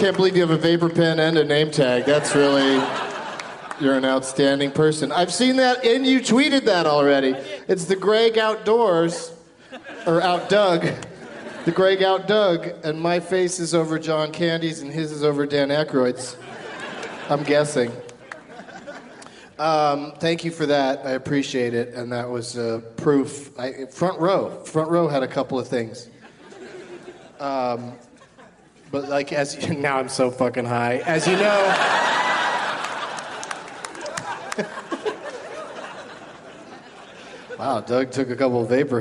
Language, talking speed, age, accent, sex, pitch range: English, 145 wpm, 40-59, American, male, 125-165 Hz